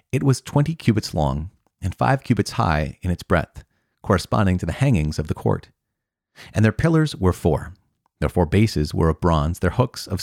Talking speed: 195 wpm